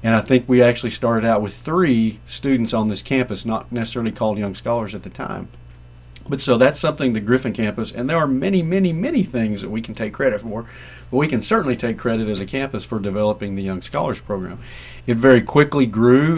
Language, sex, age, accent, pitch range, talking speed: English, male, 50-69, American, 105-125 Hz, 220 wpm